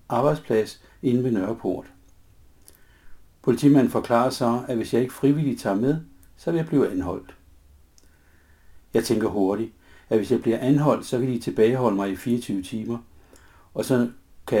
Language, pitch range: Danish, 90-125 Hz